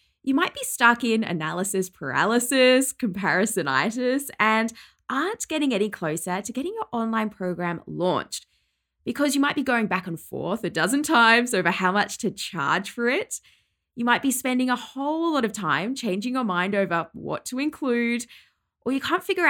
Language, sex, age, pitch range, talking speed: English, female, 10-29, 185-260 Hz, 175 wpm